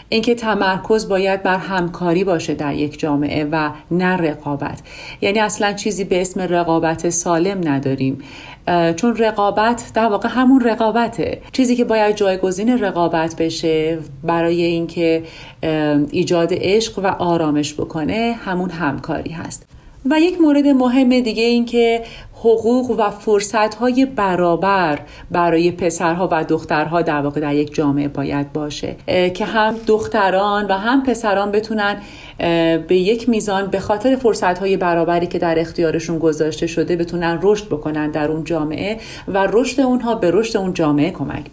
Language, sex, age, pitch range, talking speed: Persian, female, 40-59, 165-220 Hz, 145 wpm